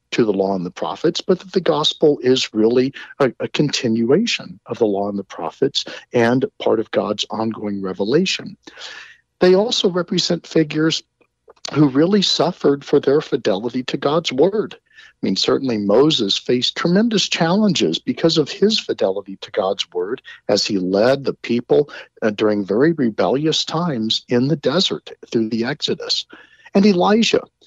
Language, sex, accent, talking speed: English, male, American, 155 wpm